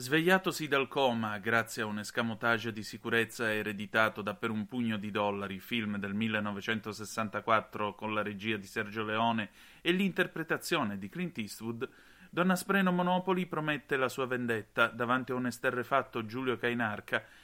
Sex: male